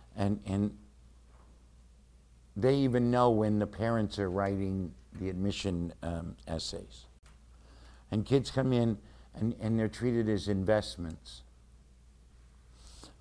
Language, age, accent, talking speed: English, 60-79, American, 115 wpm